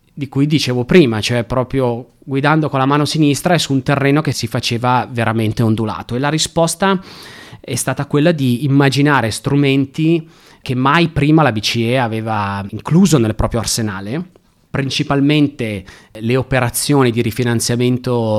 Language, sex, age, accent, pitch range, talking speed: Italian, male, 30-49, native, 105-130 Hz, 145 wpm